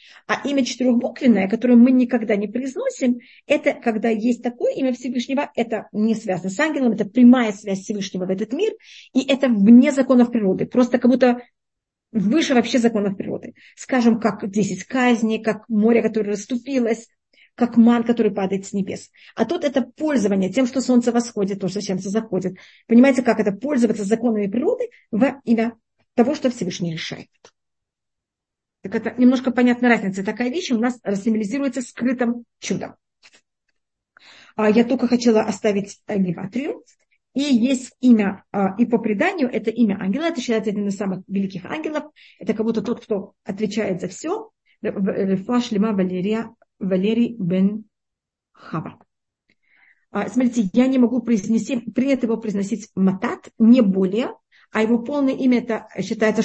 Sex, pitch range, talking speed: female, 205-250 Hz, 145 wpm